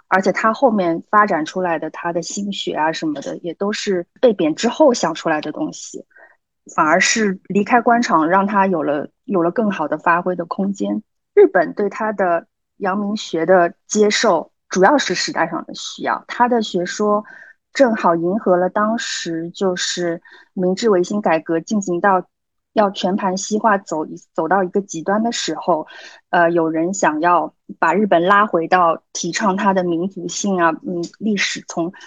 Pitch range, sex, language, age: 175-220 Hz, female, Chinese, 30-49